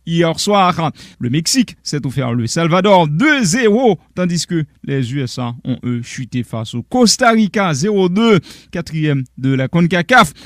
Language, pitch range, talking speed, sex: French, 150-225 Hz, 145 wpm, male